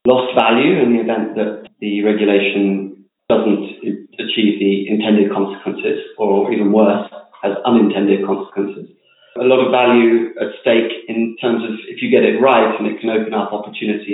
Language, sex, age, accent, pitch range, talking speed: English, male, 30-49, British, 100-120 Hz, 165 wpm